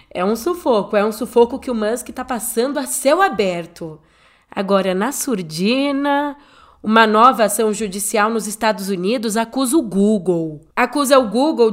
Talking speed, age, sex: 155 wpm, 20-39, female